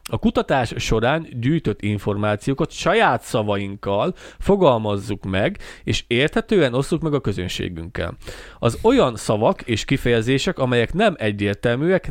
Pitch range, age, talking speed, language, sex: 105-160 Hz, 30-49, 115 wpm, Hungarian, male